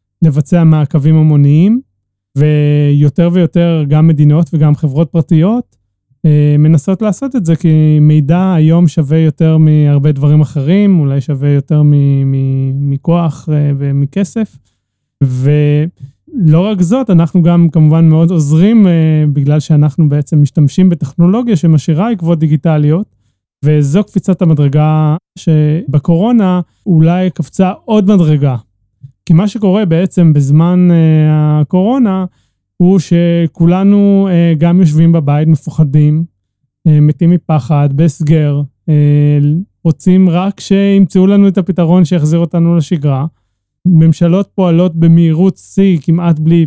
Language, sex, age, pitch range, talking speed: Hebrew, male, 30-49, 150-175 Hz, 110 wpm